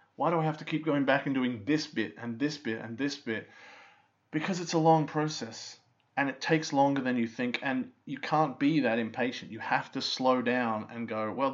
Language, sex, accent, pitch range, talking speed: English, male, Australian, 115-155 Hz, 230 wpm